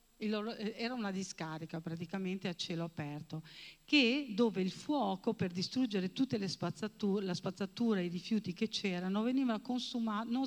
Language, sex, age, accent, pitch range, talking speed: Italian, female, 50-69, native, 175-230 Hz, 150 wpm